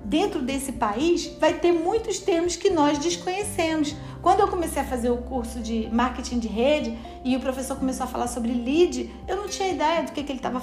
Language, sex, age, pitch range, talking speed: Portuguese, female, 40-59, 260-345 Hz, 215 wpm